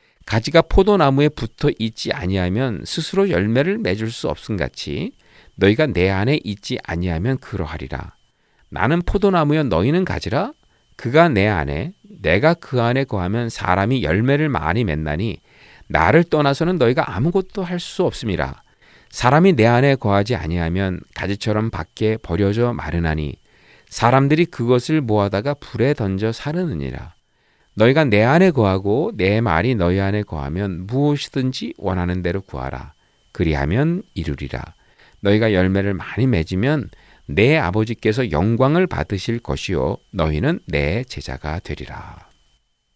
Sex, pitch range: male, 90-145 Hz